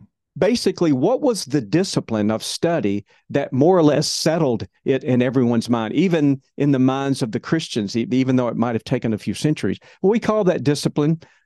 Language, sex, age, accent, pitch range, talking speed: English, male, 50-69, American, 125-175 Hz, 190 wpm